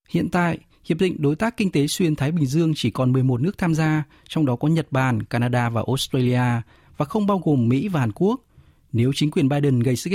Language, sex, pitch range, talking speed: Vietnamese, male, 120-160 Hz, 235 wpm